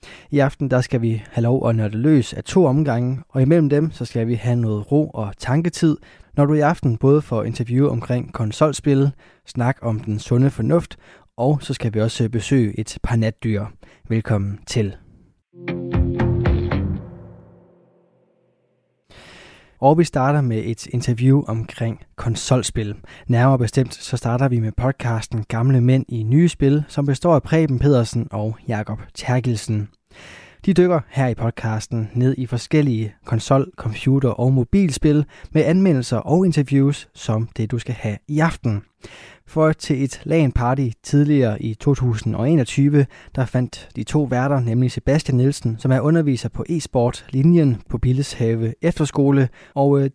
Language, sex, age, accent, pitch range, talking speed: Danish, male, 20-39, native, 115-145 Hz, 155 wpm